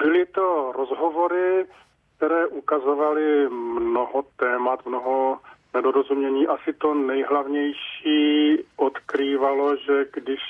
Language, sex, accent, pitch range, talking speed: Czech, male, native, 130-155 Hz, 85 wpm